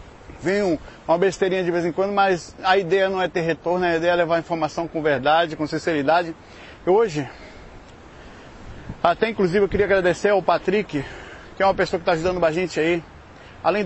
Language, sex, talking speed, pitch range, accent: Portuguese, male, 180 wpm, 170-205 Hz, Brazilian